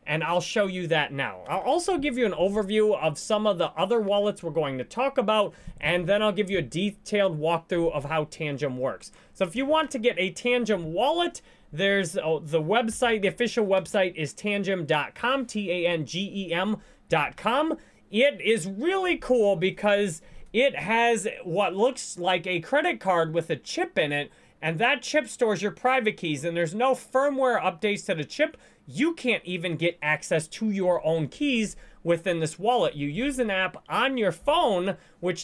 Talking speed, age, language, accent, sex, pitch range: 180 wpm, 30-49, English, American, male, 170-235 Hz